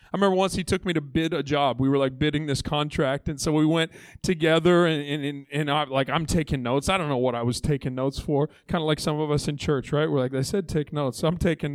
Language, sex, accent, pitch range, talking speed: English, male, American, 150-200 Hz, 290 wpm